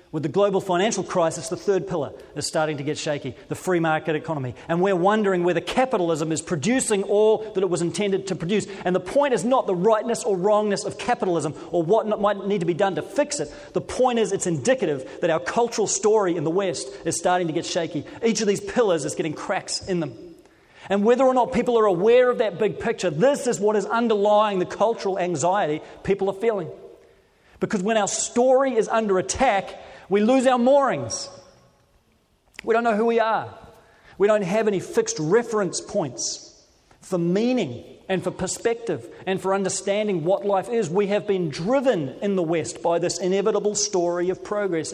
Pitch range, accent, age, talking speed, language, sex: 170-215 Hz, Australian, 30-49, 200 wpm, English, male